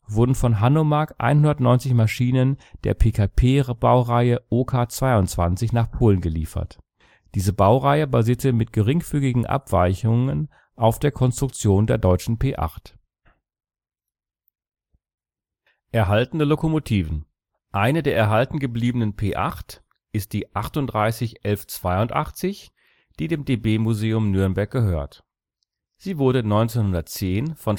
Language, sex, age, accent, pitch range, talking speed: English, male, 40-59, German, 100-135 Hz, 95 wpm